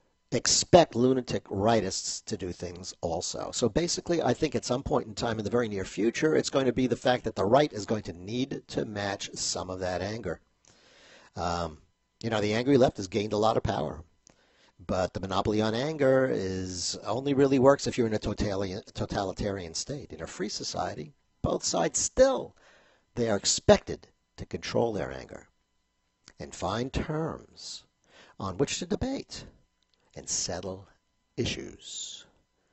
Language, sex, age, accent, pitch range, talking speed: English, male, 50-69, American, 95-140 Hz, 165 wpm